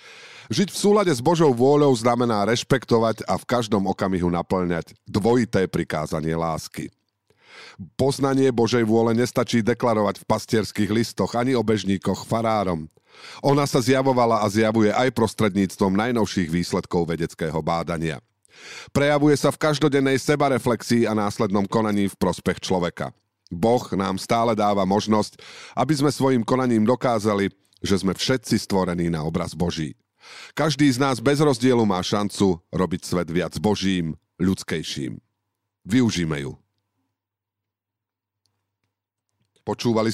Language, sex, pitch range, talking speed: Slovak, male, 95-125 Hz, 125 wpm